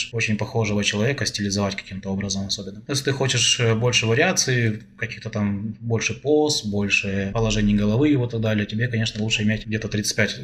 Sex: male